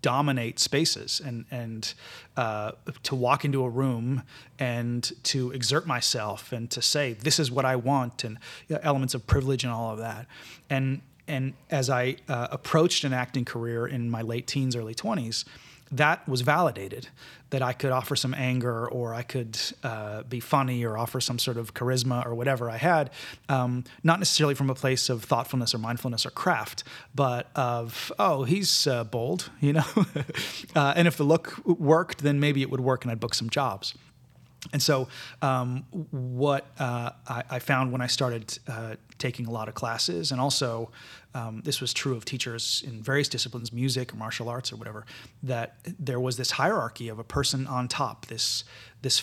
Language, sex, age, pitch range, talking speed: English, male, 30-49, 120-140 Hz, 185 wpm